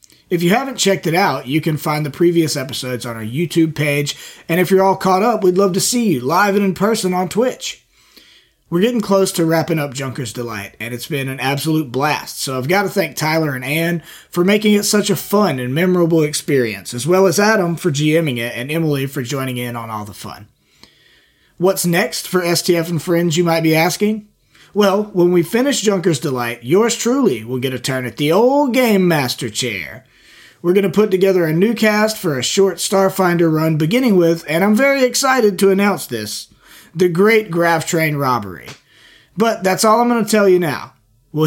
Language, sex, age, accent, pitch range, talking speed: English, male, 30-49, American, 145-195 Hz, 210 wpm